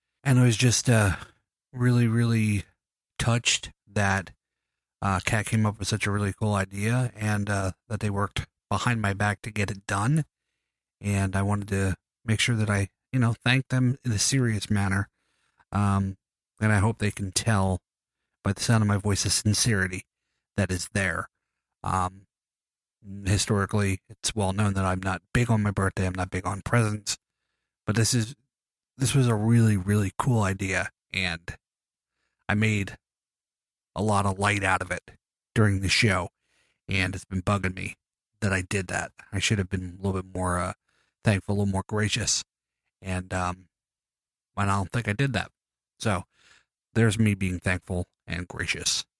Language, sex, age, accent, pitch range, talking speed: English, male, 30-49, American, 95-110 Hz, 175 wpm